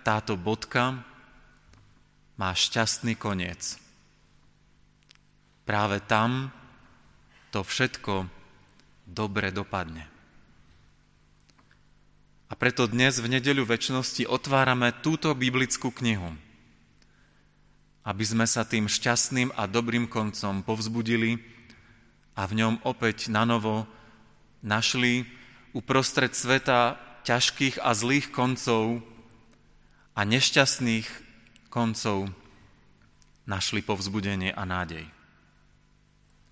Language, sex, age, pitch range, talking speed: Slovak, male, 30-49, 105-130 Hz, 80 wpm